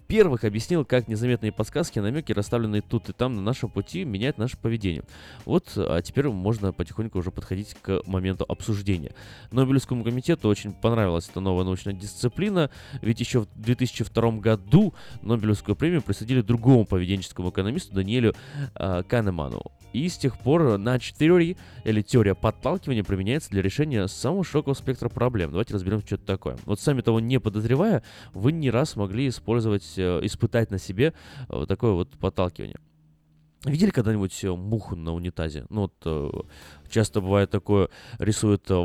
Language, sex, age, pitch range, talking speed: Russian, male, 20-39, 95-120 Hz, 145 wpm